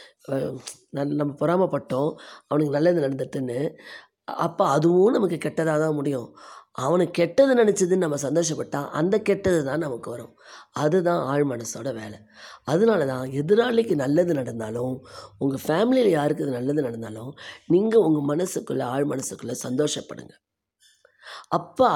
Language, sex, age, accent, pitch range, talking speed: Tamil, female, 20-39, native, 135-170 Hz, 120 wpm